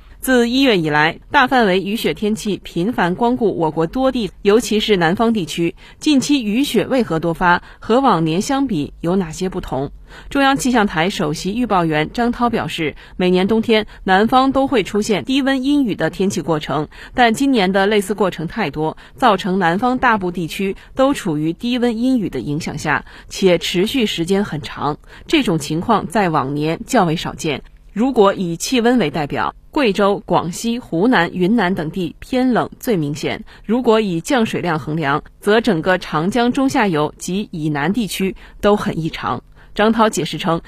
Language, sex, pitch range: Chinese, female, 165-235 Hz